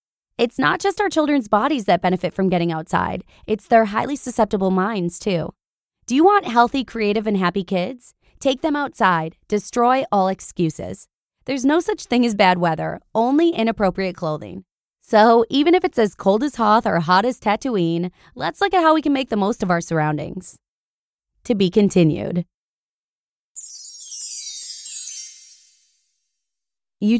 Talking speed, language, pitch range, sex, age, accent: 150 wpm, English, 175-230 Hz, female, 20-39, American